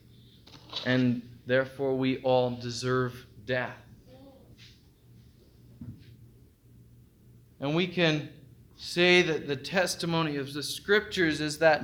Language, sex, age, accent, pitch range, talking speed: English, male, 20-39, American, 120-150 Hz, 90 wpm